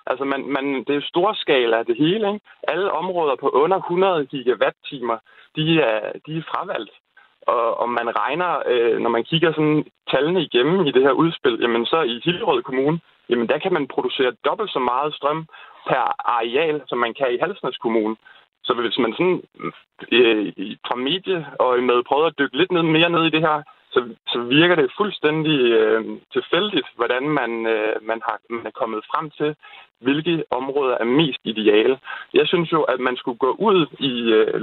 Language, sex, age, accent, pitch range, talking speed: Danish, male, 20-39, native, 135-190 Hz, 190 wpm